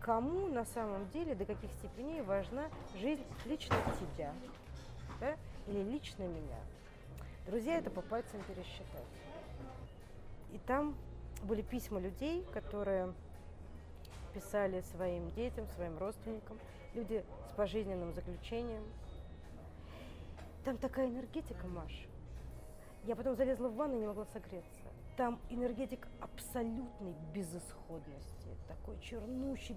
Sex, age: female, 30-49